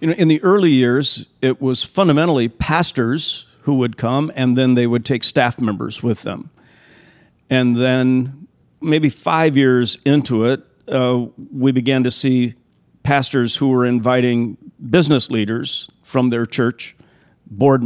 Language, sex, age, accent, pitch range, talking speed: English, male, 50-69, American, 125-140 Hz, 145 wpm